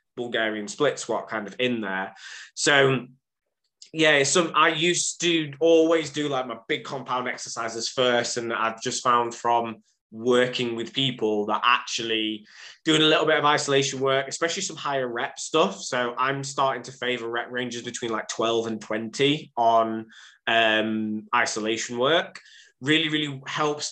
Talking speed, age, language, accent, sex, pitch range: 155 wpm, 20-39, English, British, male, 115-140 Hz